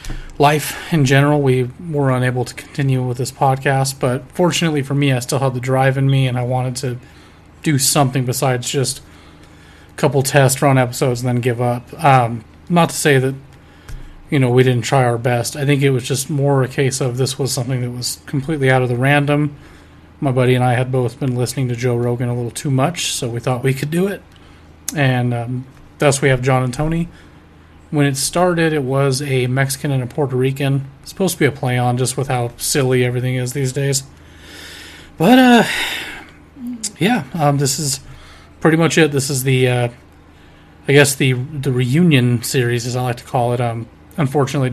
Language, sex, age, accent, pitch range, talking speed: English, male, 30-49, American, 120-140 Hz, 205 wpm